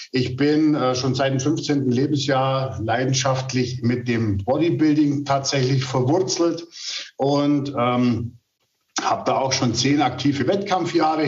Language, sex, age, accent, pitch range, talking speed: German, male, 50-69, German, 125-150 Hz, 115 wpm